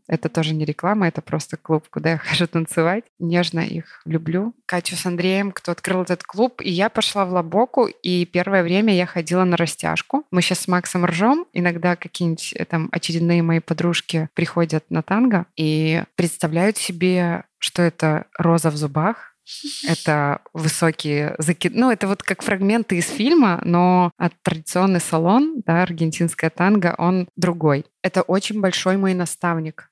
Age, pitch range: 20-39, 165-185 Hz